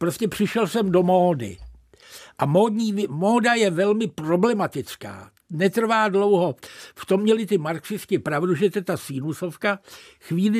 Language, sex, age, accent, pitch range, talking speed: Czech, male, 60-79, native, 170-205 Hz, 140 wpm